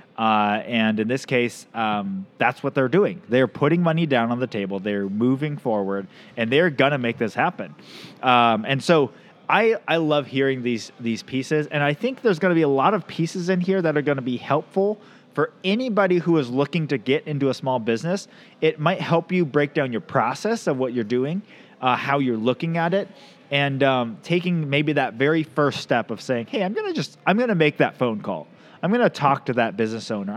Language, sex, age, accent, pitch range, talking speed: English, male, 20-39, American, 120-170 Hz, 225 wpm